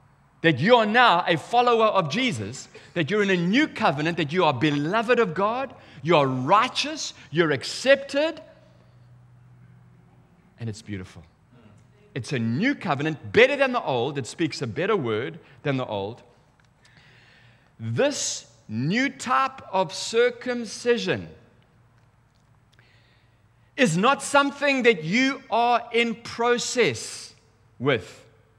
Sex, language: male, English